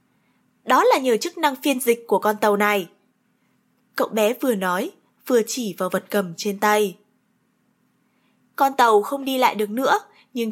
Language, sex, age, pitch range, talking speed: Vietnamese, female, 20-39, 210-280 Hz, 170 wpm